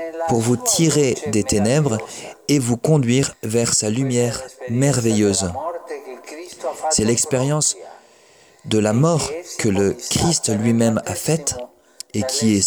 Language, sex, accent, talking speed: French, male, French, 125 wpm